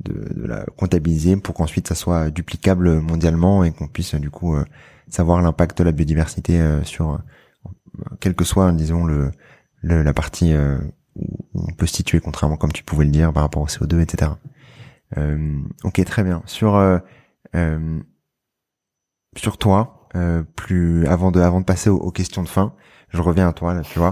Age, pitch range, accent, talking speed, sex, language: 20-39, 80-95 Hz, French, 190 wpm, male, French